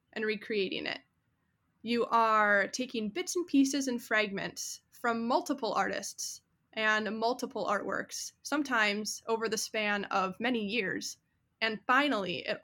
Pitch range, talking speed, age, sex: 210-245 Hz, 130 wpm, 10-29, female